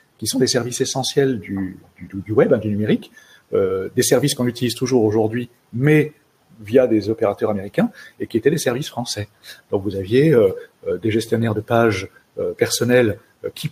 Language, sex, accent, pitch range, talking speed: French, male, French, 110-145 Hz, 175 wpm